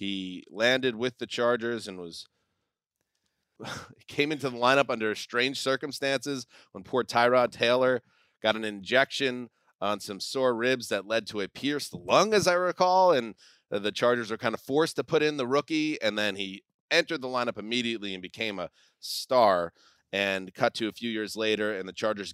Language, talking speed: English, 180 wpm